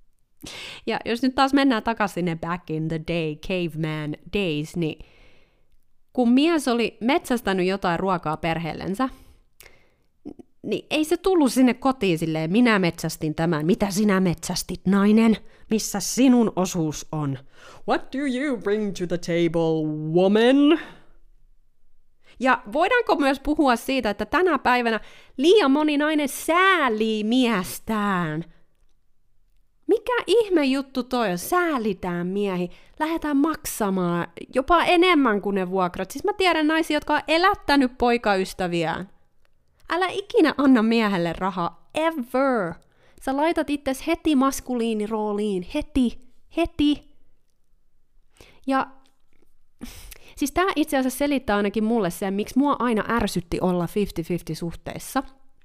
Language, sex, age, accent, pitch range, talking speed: Finnish, female, 30-49, native, 180-275 Hz, 120 wpm